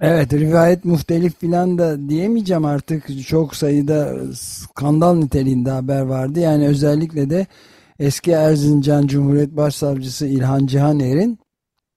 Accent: native